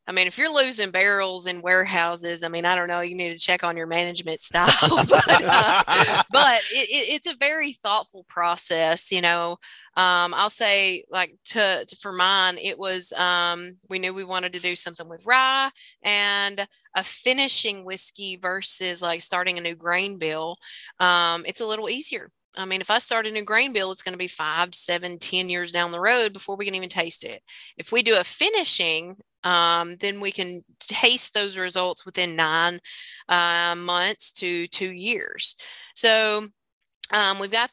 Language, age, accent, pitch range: English, 20-39, American, 175-210 Hz